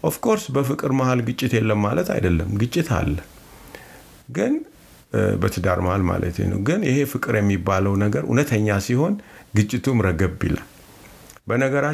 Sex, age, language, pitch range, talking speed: male, 50-69, English, 95-125 Hz, 140 wpm